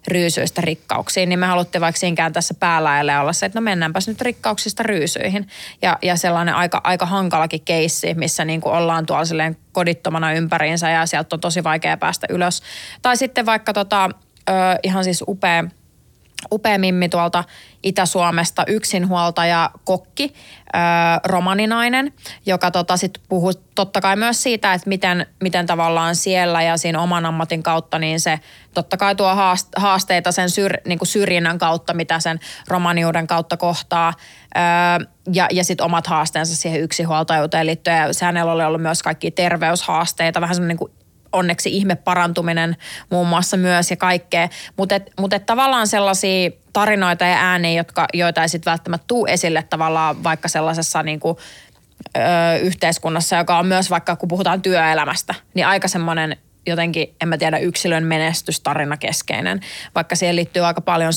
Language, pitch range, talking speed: Finnish, 165-185 Hz, 150 wpm